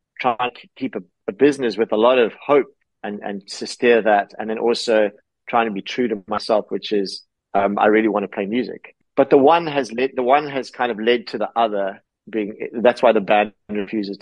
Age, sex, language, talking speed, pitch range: 30-49, male, English, 220 wpm, 105-125 Hz